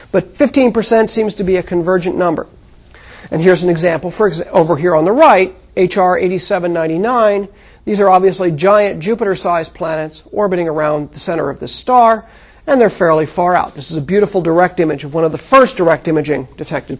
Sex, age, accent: male, 40-59, American